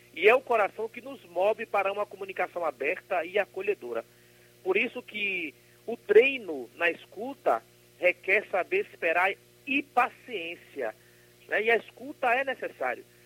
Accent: Brazilian